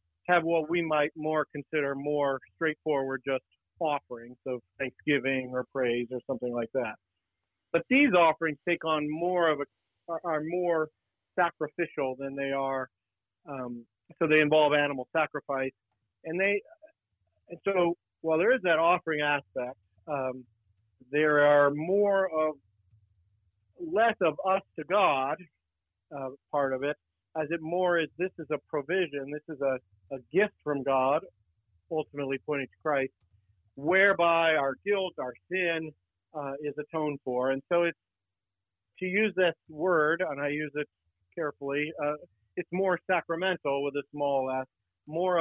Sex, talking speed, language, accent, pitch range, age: male, 145 wpm, English, American, 130-165 Hz, 50-69